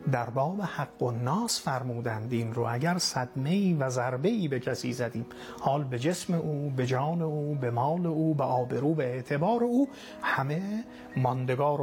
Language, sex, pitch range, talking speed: Persian, male, 125-170 Hz, 155 wpm